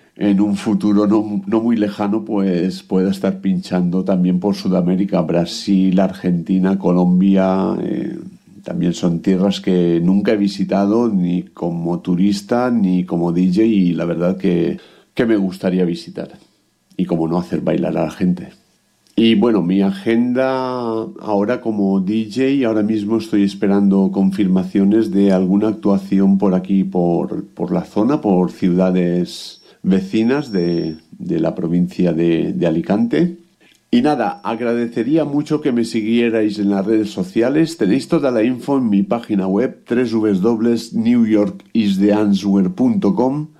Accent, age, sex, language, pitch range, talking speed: Spanish, 50-69, male, English, 95-120 Hz, 135 wpm